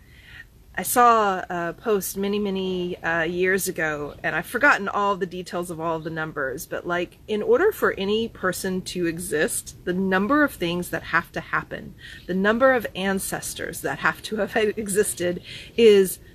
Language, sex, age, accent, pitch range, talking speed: English, female, 30-49, American, 165-200 Hz, 170 wpm